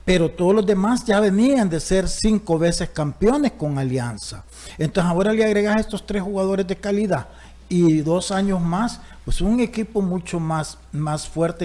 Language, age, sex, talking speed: Spanish, 60-79, male, 175 wpm